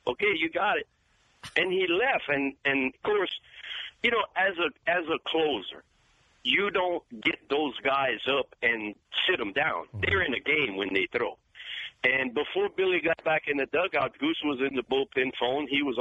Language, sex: English, male